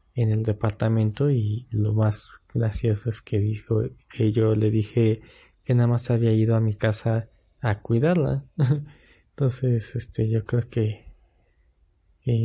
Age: 20-39